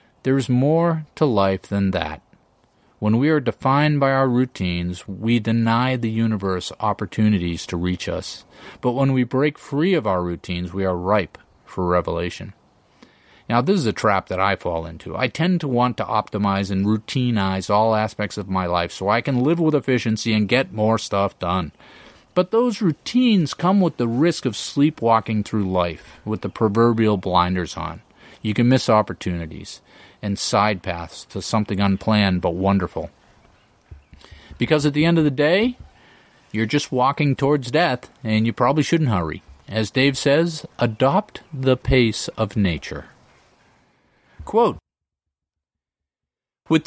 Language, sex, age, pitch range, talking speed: English, male, 40-59, 95-135 Hz, 155 wpm